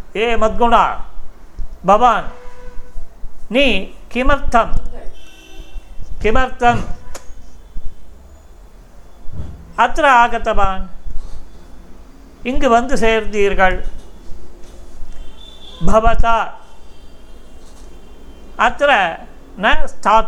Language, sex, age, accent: Tamil, male, 50-69, native